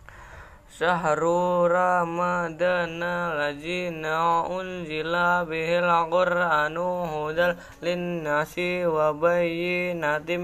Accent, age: Indian, 10-29